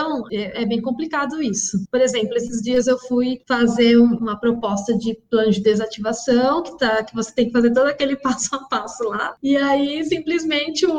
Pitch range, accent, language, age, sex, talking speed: 235-285 Hz, Brazilian, Portuguese, 20-39, female, 185 wpm